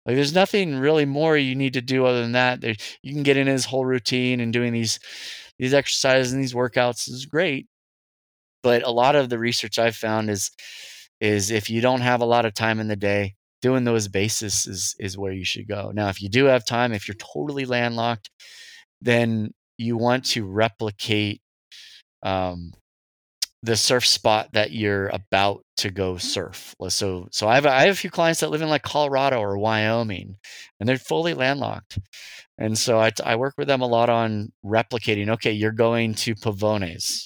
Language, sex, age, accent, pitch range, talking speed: English, male, 20-39, American, 105-125 Hz, 195 wpm